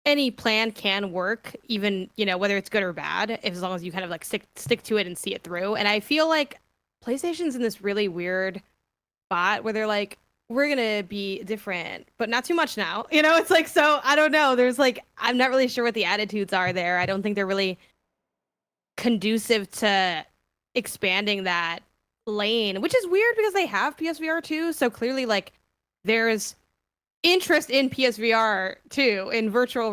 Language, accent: English, American